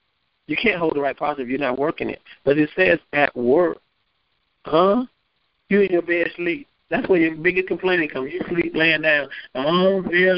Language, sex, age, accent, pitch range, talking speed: English, male, 50-69, American, 135-200 Hz, 200 wpm